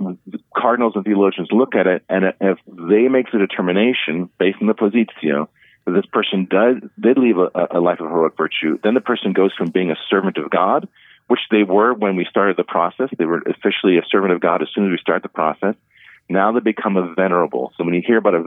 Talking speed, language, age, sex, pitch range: 230 wpm, English, 40-59, male, 90-115 Hz